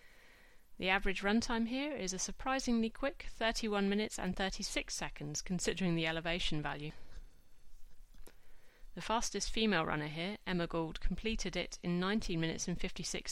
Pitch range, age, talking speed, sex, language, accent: 170-220 Hz, 30-49, 145 wpm, female, English, British